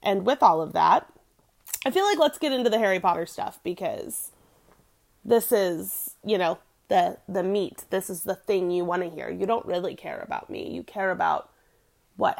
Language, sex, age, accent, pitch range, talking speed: English, female, 30-49, American, 195-290 Hz, 200 wpm